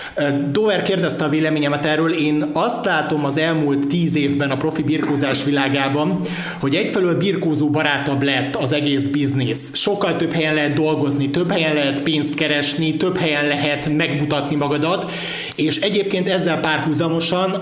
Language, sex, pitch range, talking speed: Hungarian, male, 145-175 Hz, 145 wpm